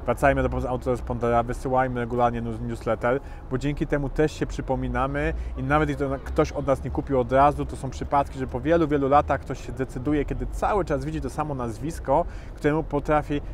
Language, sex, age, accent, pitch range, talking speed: Polish, male, 30-49, native, 125-150 Hz, 190 wpm